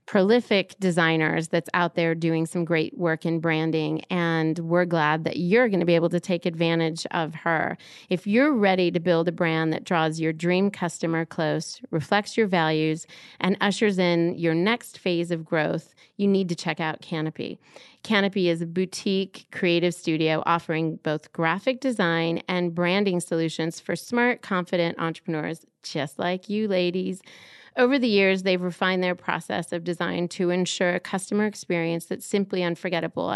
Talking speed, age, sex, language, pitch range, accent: 165 wpm, 30-49, female, English, 165-190 Hz, American